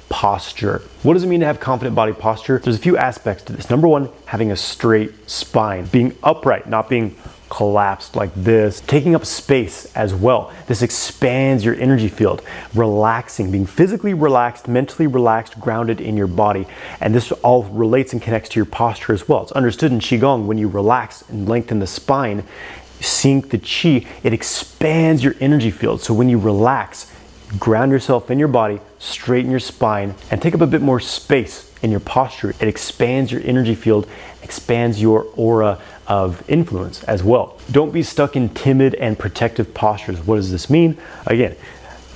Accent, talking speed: American, 180 wpm